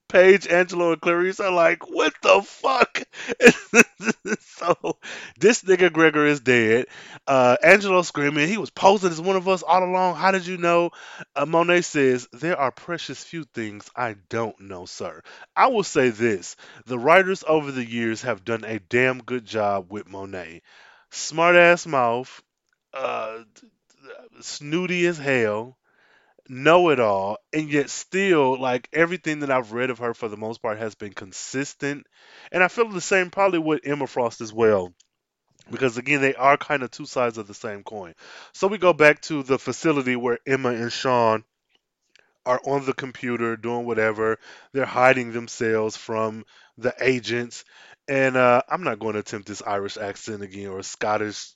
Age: 20-39